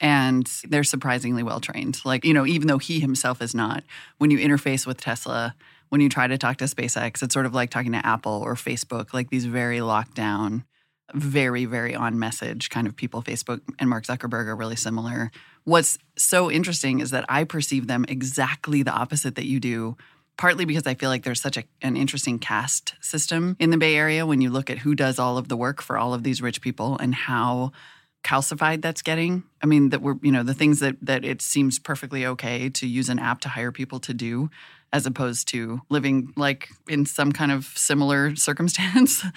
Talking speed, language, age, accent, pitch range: 205 wpm, English, 20-39, American, 125-150 Hz